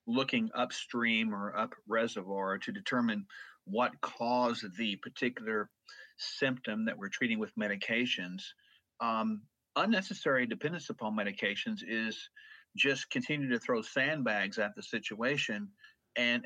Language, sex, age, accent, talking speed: English, male, 50-69, American, 115 wpm